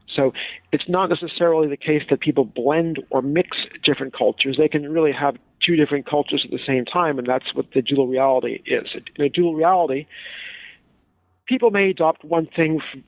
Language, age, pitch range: English, 50-69, 130-160 Hz